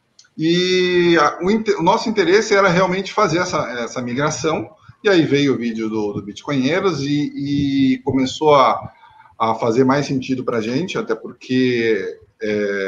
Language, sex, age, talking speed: Portuguese, male, 20-39, 150 wpm